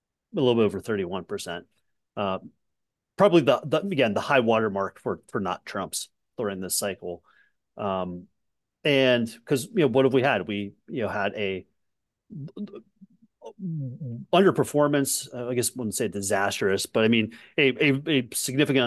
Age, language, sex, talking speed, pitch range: 30-49, English, male, 160 wpm, 100-130 Hz